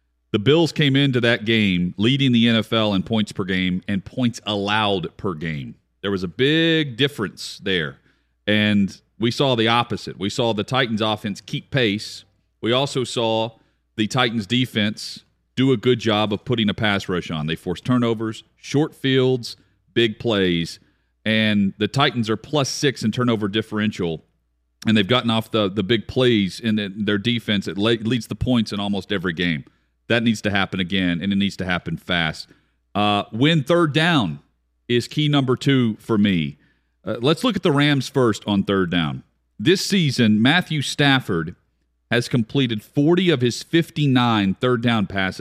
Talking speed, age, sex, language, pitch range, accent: 175 wpm, 40-59, male, English, 100-125 Hz, American